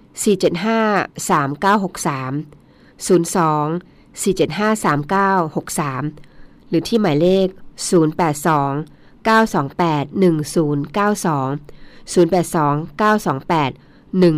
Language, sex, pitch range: Thai, female, 150-190 Hz